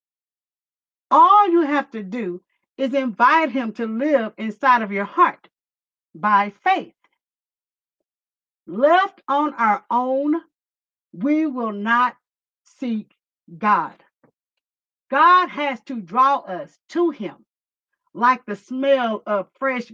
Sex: female